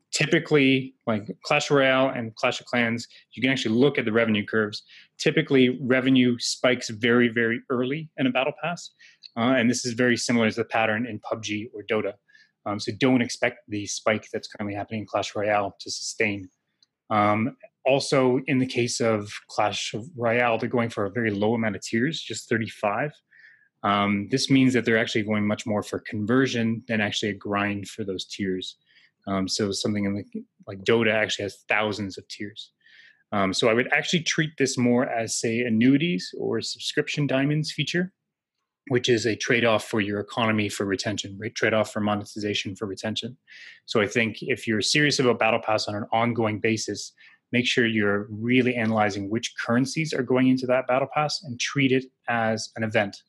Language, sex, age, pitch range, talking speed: English, male, 20-39, 105-130 Hz, 180 wpm